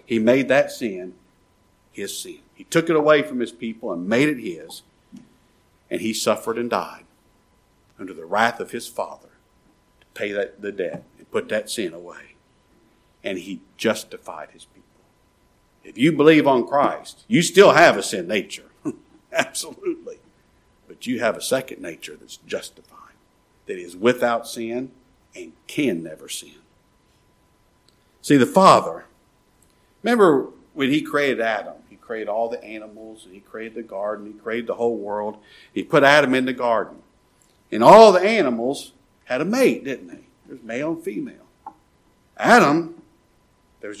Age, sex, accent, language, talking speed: 50-69, male, American, English, 155 wpm